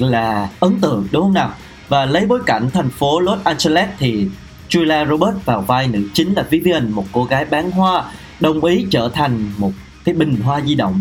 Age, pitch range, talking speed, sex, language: 20-39, 115-175 Hz, 205 wpm, male, Vietnamese